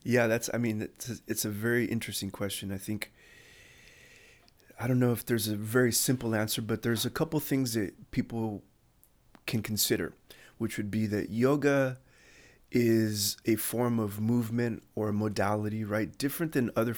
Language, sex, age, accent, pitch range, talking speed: English, male, 30-49, American, 105-120 Hz, 165 wpm